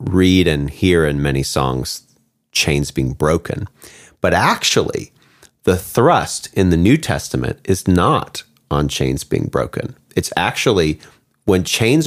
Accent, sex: American, male